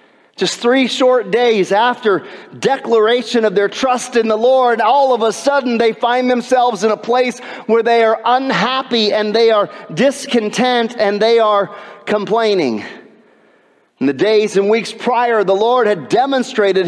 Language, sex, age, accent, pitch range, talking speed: English, male, 40-59, American, 205-265 Hz, 155 wpm